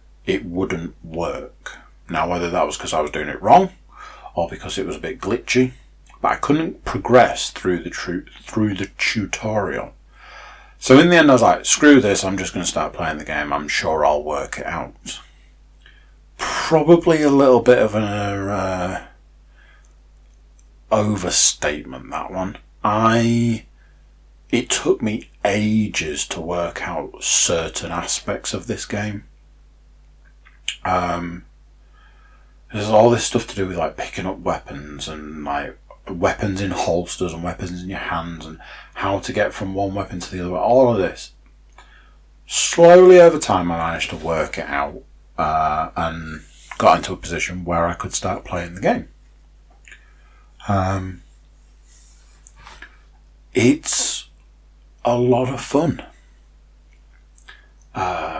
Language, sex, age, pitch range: English, male, 30-49, 75-105 Hz